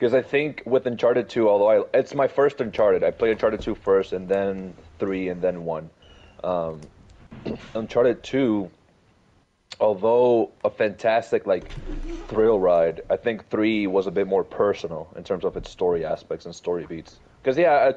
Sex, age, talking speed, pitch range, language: male, 30-49, 175 wpm, 100-130 Hz, English